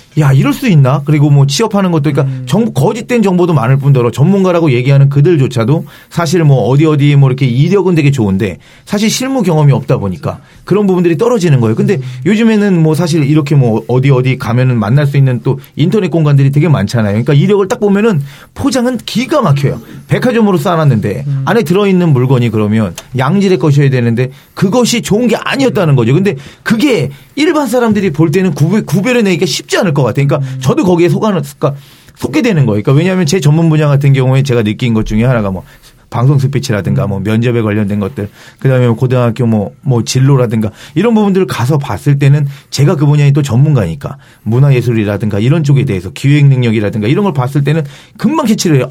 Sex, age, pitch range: male, 40-59, 130-185 Hz